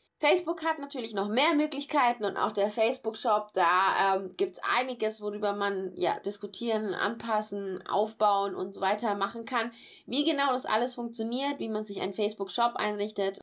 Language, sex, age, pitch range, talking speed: German, female, 20-39, 195-240 Hz, 155 wpm